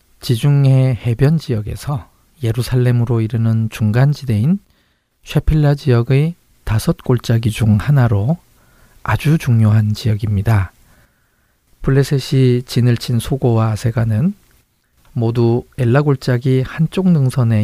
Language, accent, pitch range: Korean, native, 115-145 Hz